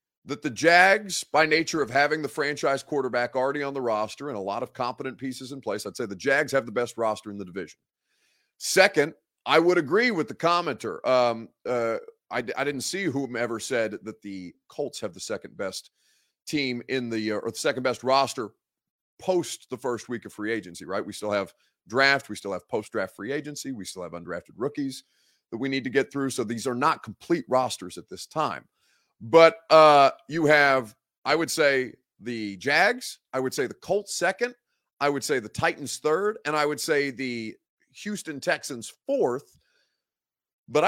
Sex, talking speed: male, 195 wpm